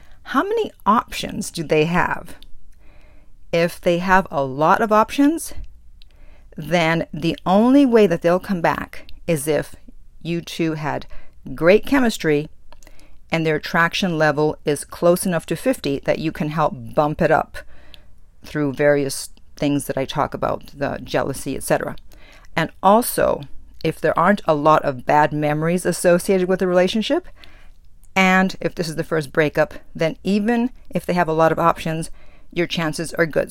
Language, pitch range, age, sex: English, 145-180 Hz, 50-69, female